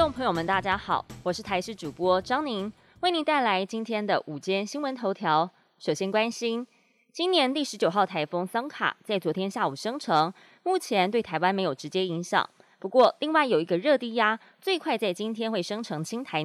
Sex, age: female, 20-39